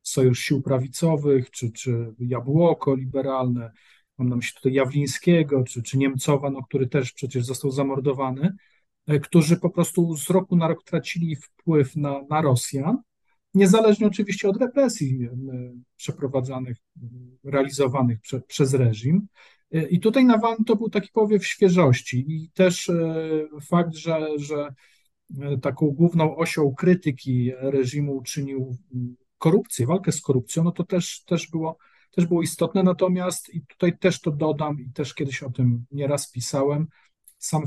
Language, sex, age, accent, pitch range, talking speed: Polish, male, 40-59, native, 130-170 Hz, 140 wpm